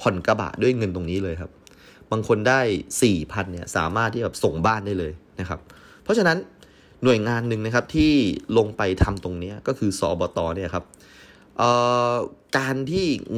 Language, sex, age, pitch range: Thai, male, 20-39, 90-110 Hz